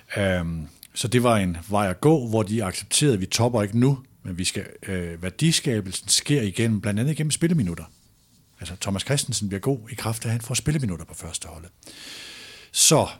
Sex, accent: male, native